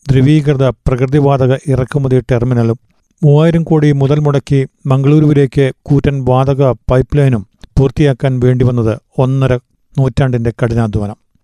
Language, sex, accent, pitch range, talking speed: Malayalam, male, native, 130-150 Hz, 100 wpm